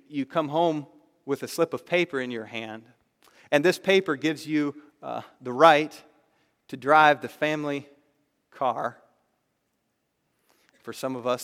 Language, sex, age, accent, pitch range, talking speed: English, male, 40-59, American, 130-190 Hz, 145 wpm